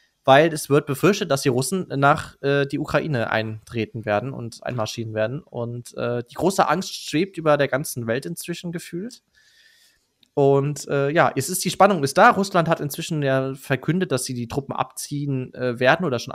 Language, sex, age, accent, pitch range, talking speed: German, male, 20-39, German, 130-165 Hz, 185 wpm